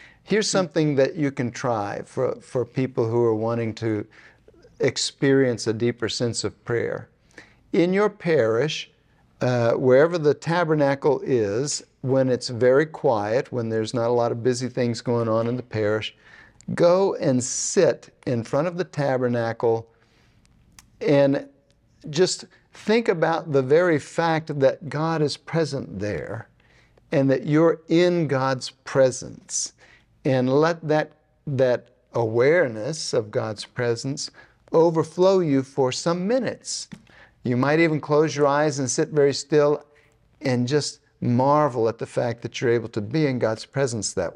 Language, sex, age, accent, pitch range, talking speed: English, male, 60-79, American, 120-155 Hz, 145 wpm